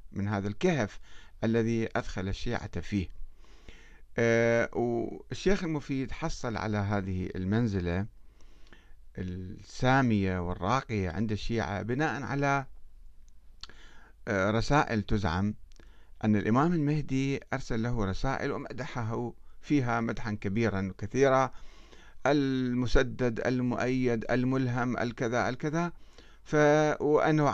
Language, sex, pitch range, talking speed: Arabic, male, 105-135 Hz, 90 wpm